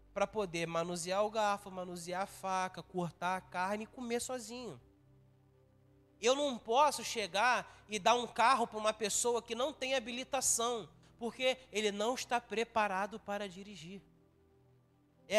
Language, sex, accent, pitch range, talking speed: Portuguese, male, Brazilian, 160-230 Hz, 145 wpm